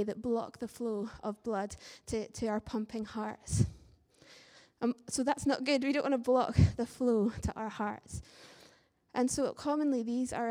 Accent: British